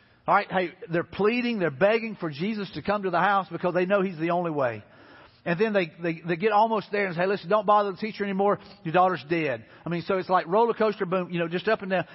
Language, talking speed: English, 260 wpm